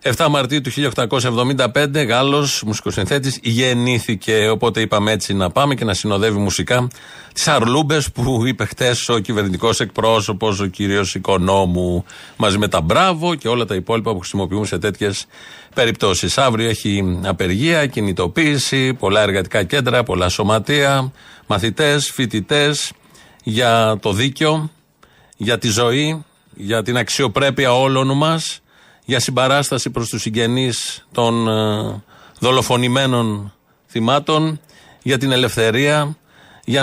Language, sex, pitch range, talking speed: Greek, male, 110-135 Hz, 120 wpm